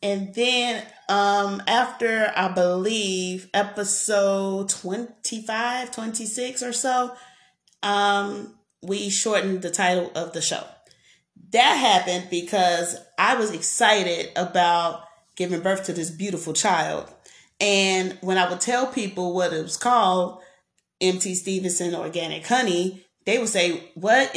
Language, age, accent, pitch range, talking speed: English, 30-49, American, 180-215 Hz, 125 wpm